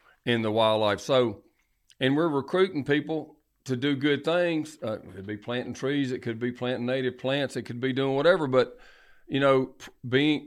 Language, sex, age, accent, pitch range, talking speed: English, male, 40-59, American, 110-140 Hz, 185 wpm